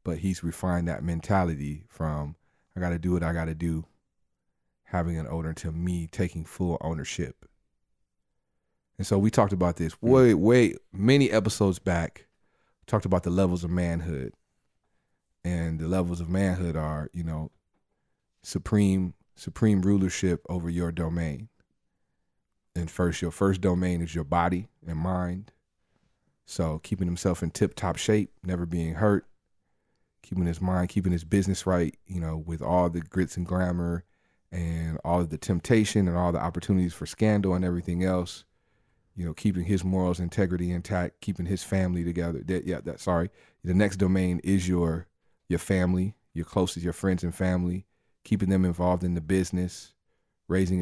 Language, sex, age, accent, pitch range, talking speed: English, male, 30-49, American, 85-95 Hz, 160 wpm